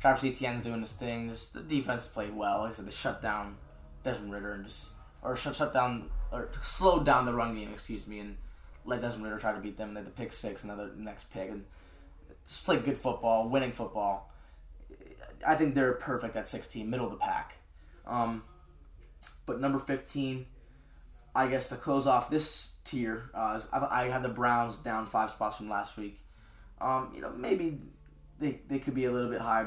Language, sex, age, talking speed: English, male, 20-39, 205 wpm